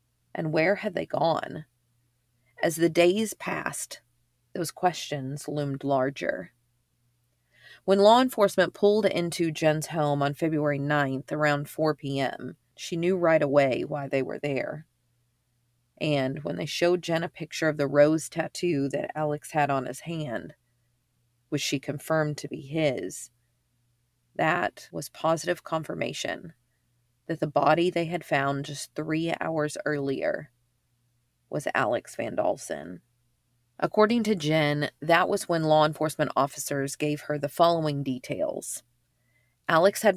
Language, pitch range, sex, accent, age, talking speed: English, 130-165 Hz, female, American, 40-59, 135 wpm